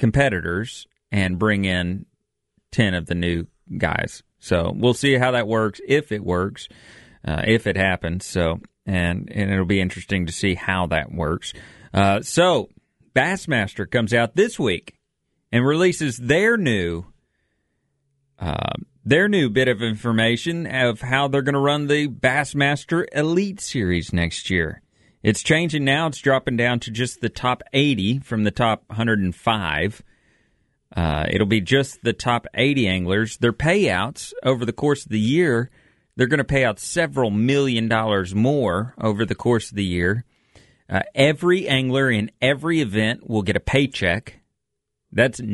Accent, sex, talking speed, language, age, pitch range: American, male, 155 wpm, English, 40-59, 95-135 Hz